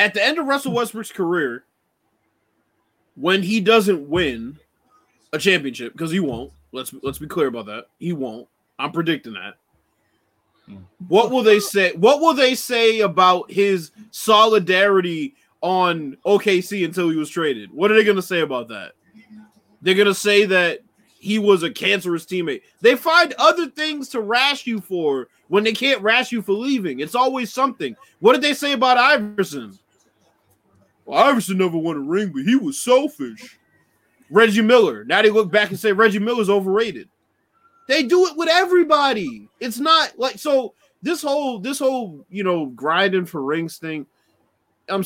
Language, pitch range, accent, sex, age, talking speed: English, 160-245 Hz, American, male, 20-39, 165 wpm